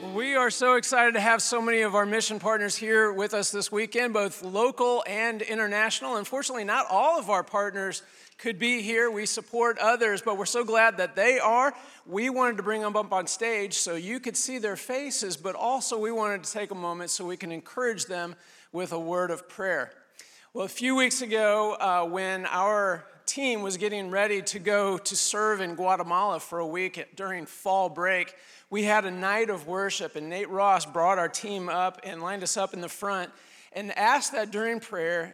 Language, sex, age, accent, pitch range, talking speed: English, male, 50-69, American, 185-230 Hz, 205 wpm